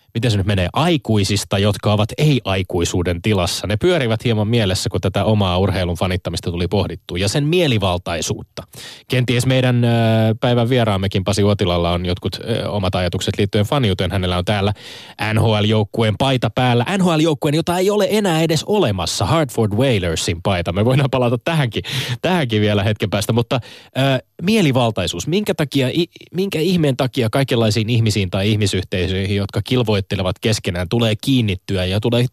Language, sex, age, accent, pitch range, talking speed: Finnish, male, 20-39, native, 100-130 Hz, 145 wpm